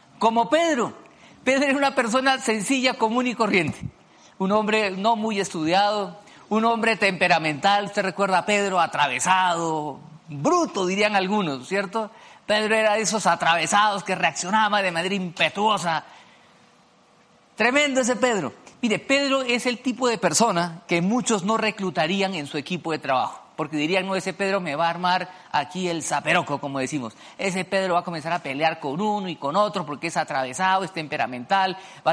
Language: Spanish